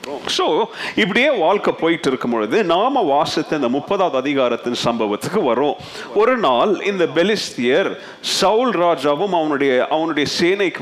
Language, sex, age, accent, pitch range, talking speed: Tamil, male, 40-59, native, 145-195 Hz, 110 wpm